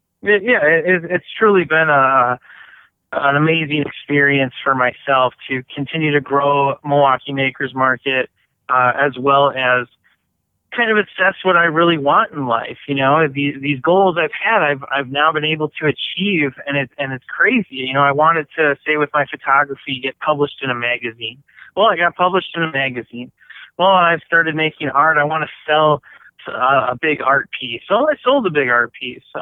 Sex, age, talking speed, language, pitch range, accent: male, 20-39, 190 wpm, English, 135-170 Hz, American